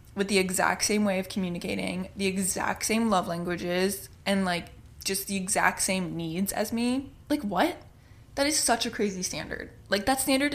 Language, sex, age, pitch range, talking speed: English, female, 20-39, 180-230 Hz, 180 wpm